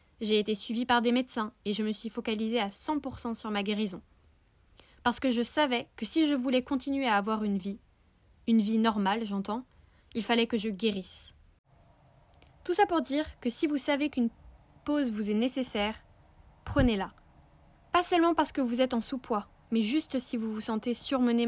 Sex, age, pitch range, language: female, 10-29, 215-265 Hz, French